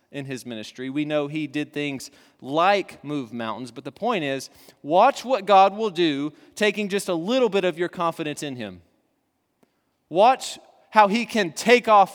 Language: English